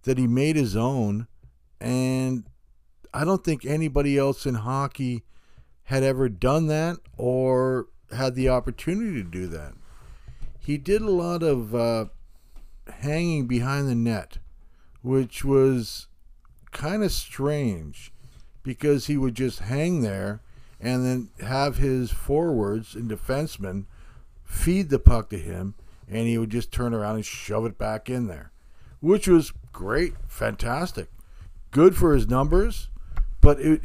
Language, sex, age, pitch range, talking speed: English, male, 50-69, 95-140 Hz, 140 wpm